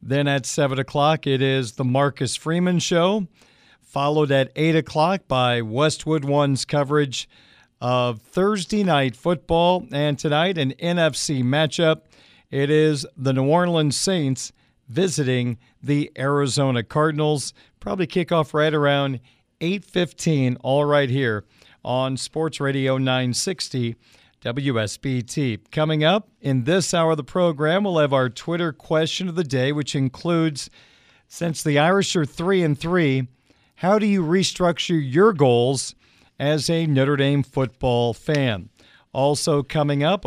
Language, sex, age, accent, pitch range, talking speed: English, male, 50-69, American, 130-165 Hz, 135 wpm